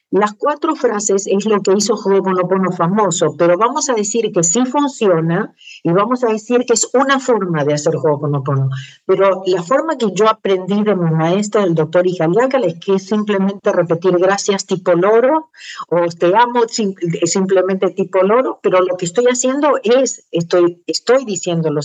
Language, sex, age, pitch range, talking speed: Spanish, female, 50-69, 175-230 Hz, 180 wpm